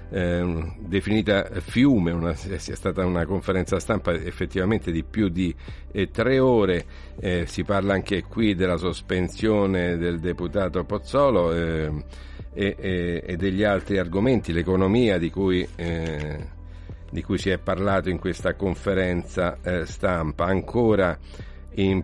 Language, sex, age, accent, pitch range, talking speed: Italian, male, 50-69, native, 85-100 Hz, 125 wpm